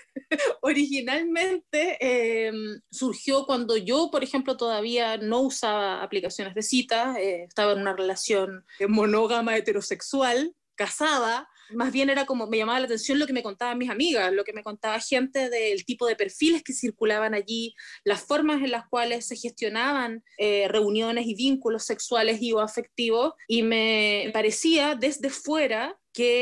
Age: 20-39